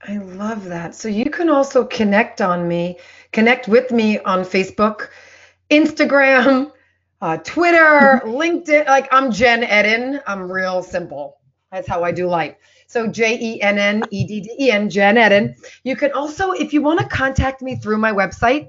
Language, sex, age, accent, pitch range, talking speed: English, female, 30-49, American, 195-250 Hz, 175 wpm